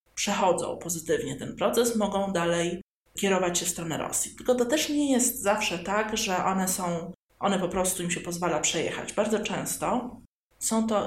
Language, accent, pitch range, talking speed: Polish, native, 180-235 Hz, 175 wpm